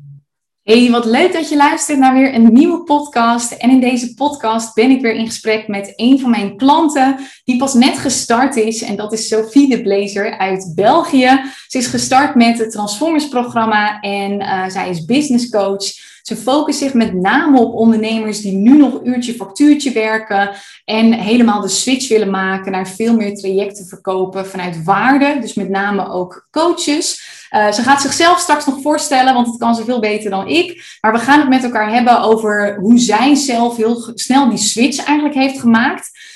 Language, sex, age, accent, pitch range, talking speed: Dutch, female, 20-39, Dutch, 205-270 Hz, 190 wpm